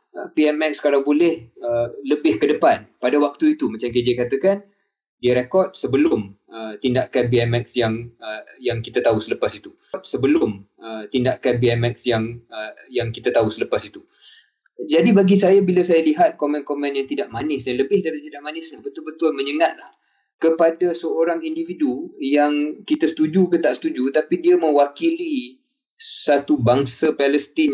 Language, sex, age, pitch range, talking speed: Malay, male, 20-39, 130-175 Hz, 150 wpm